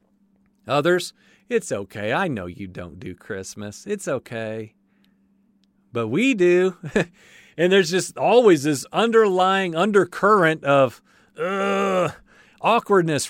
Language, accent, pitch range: English, American, 145-200 Hz